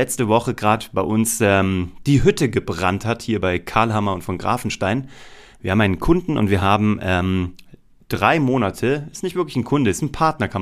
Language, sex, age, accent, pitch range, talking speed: German, male, 30-49, German, 100-130 Hz, 200 wpm